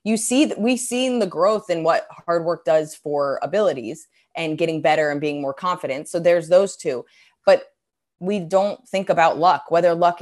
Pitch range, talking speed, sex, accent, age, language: 150-195 Hz, 195 wpm, female, American, 20-39, English